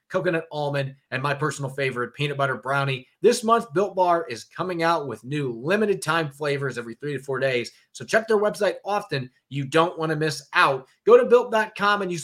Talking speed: 205 wpm